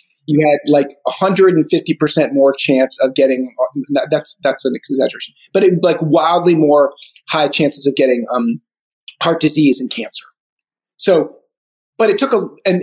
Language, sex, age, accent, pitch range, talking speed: English, male, 30-49, American, 145-190 Hz, 150 wpm